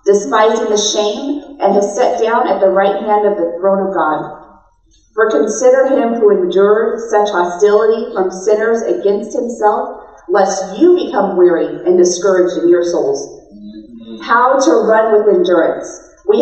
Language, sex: English, female